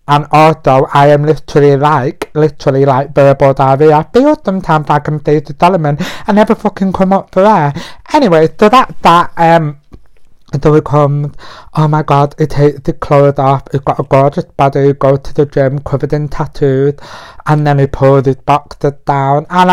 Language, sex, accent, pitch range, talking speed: English, male, British, 145-185 Hz, 195 wpm